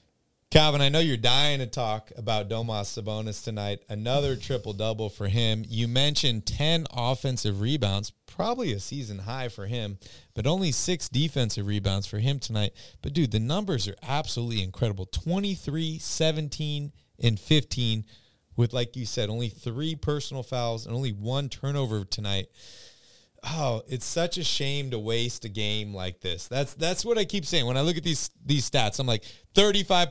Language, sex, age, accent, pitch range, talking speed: English, male, 30-49, American, 110-150 Hz, 170 wpm